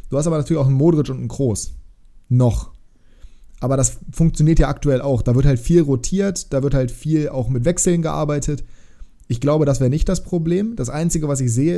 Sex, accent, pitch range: male, German, 125-155 Hz